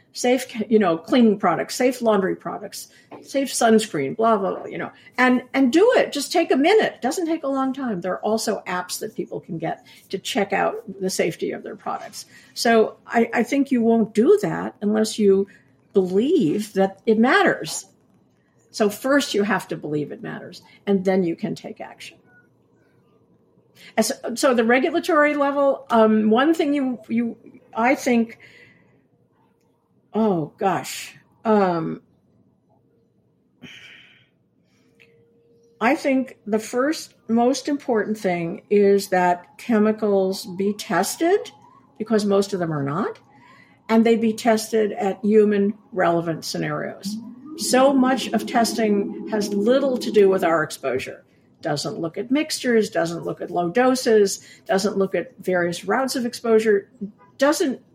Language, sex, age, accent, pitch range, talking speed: English, female, 50-69, American, 195-255 Hz, 145 wpm